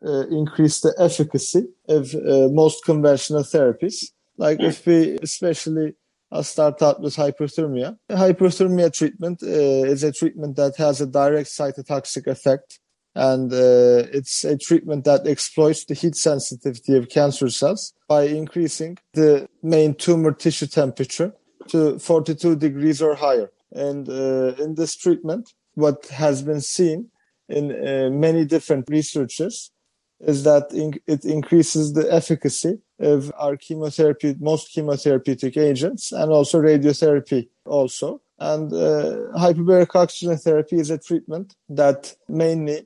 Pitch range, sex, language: 145-165 Hz, male, English